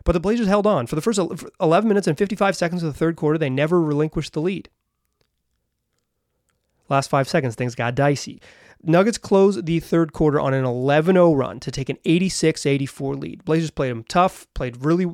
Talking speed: 190 wpm